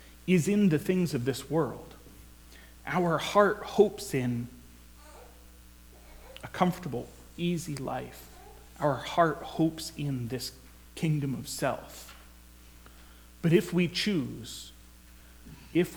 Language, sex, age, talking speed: English, male, 30-49, 105 wpm